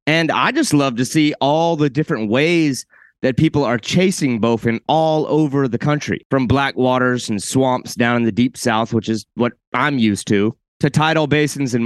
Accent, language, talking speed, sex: American, English, 195 wpm, male